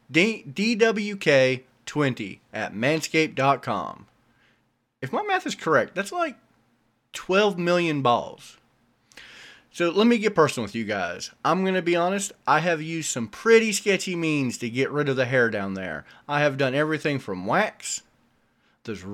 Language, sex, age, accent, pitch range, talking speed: English, male, 30-49, American, 125-185 Hz, 150 wpm